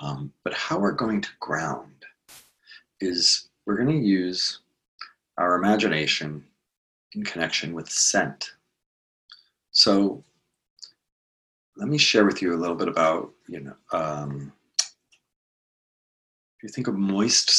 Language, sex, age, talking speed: English, male, 40-59, 125 wpm